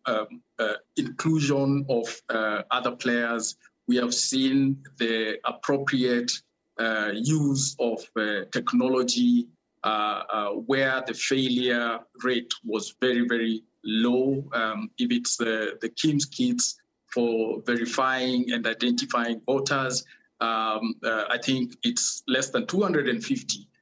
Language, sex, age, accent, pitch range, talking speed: English, male, 50-69, South African, 120-150 Hz, 120 wpm